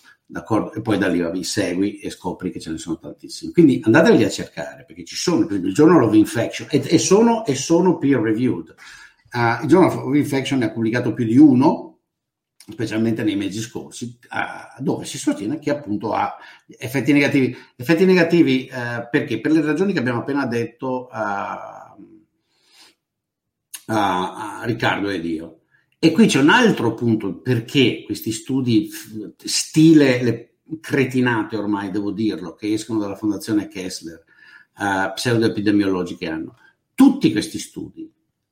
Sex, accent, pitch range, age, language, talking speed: male, native, 110-155 Hz, 60-79, Italian, 155 wpm